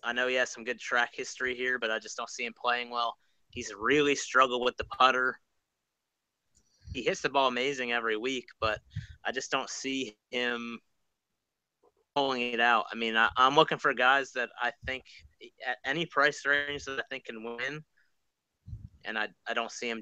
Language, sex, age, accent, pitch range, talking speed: English, male, 30-49, American, 115-135 Hz, 190 wpm